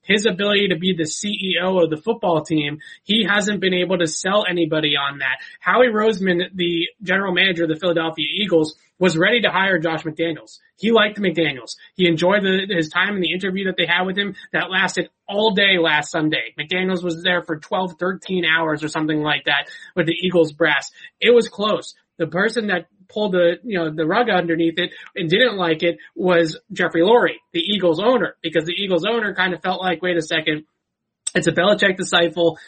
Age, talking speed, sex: 20-39, 200 wpm, male